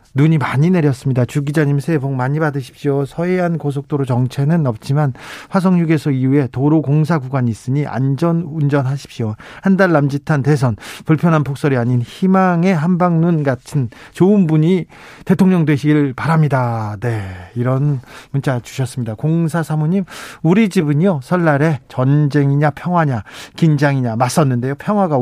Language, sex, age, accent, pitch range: Korean, male, 40-59, native, 130-175 Hz